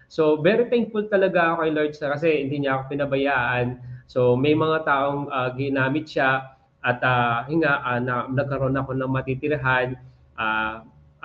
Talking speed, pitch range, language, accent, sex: 155 wpm, 130-165 Hz, Filipino, native, male